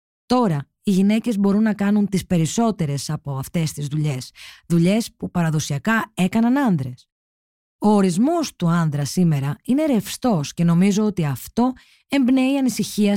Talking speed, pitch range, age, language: 135 wpm, 155-215 Hz, 20-39, Greek